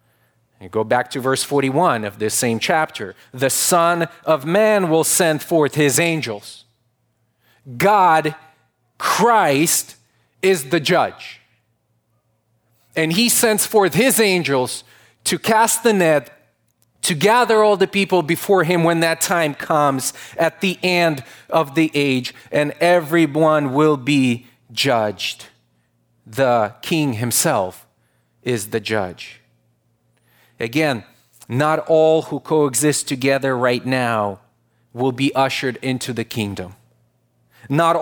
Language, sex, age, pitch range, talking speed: English, male, 30-49, 120-170 Hz, 120 wpm